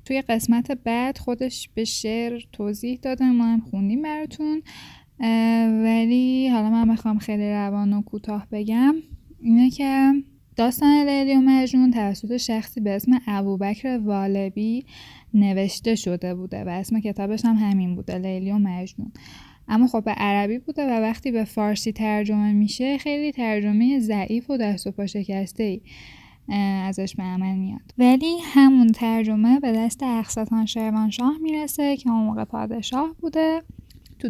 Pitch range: 210-255 Hz